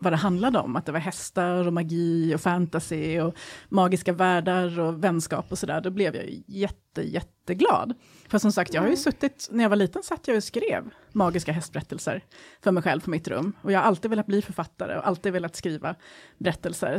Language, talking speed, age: Swedish, 210 wpm, 30-49